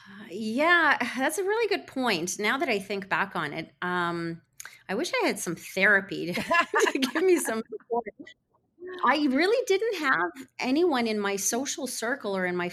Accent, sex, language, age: American, female, English, 30-49